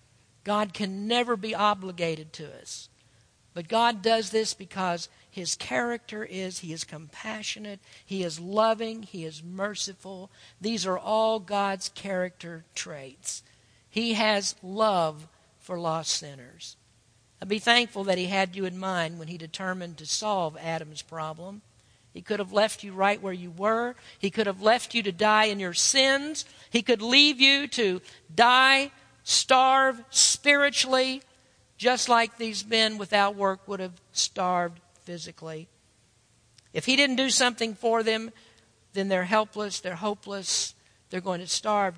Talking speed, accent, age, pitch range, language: 150 wpm, American, 50-69, 165-220 Hz, English